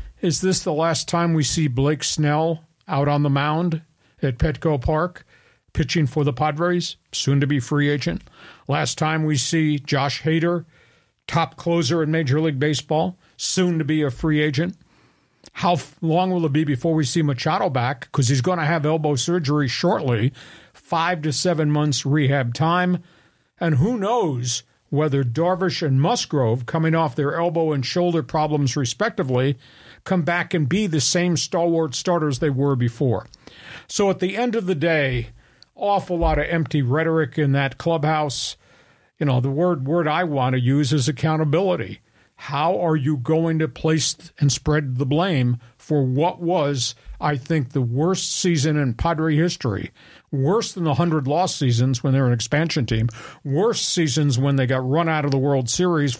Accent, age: American, 50-69